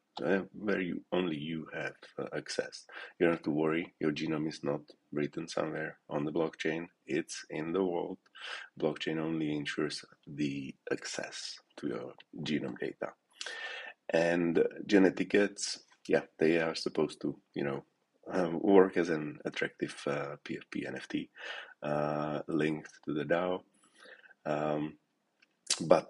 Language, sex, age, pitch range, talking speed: English, male, 30-49, 75-85 Hz, 140 wpm